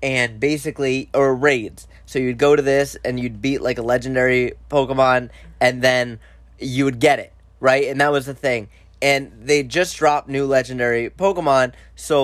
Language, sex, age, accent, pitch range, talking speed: English, male, 20-39, American, 110-150 Hz, 175 wpm